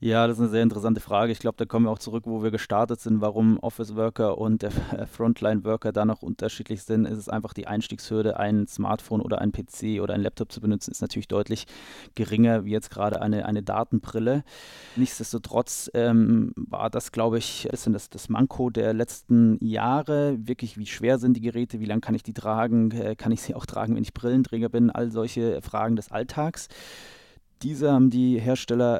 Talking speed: 195 wpm